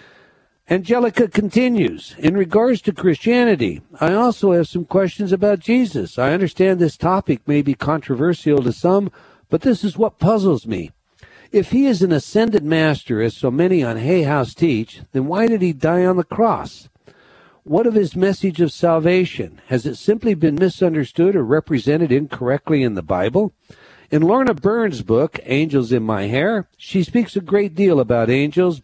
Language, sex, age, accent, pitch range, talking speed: English, male, 60-79, American, 145-200 Hz, 170 wpm